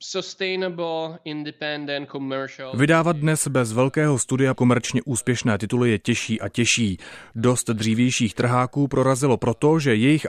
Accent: native